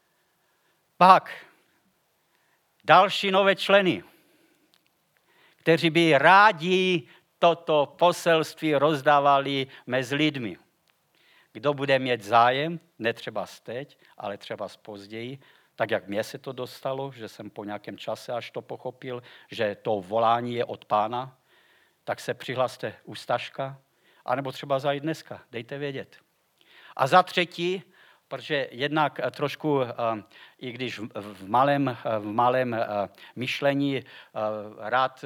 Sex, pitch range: male, 115-150 Hz